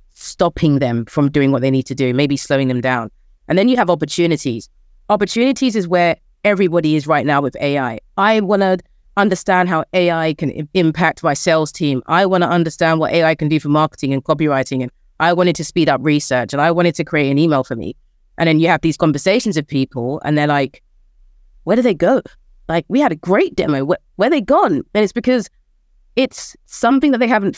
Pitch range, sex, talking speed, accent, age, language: 145-185 Hz, female, 220 wpm, British, 30-49, English